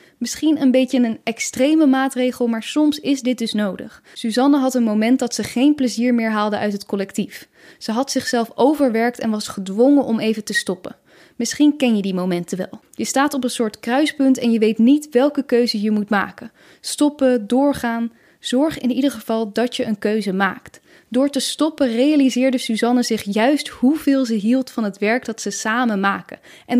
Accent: Dutch